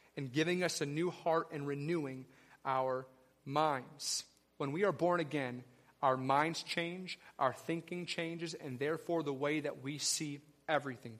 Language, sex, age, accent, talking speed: English, male, 30-49, American, 155 wpm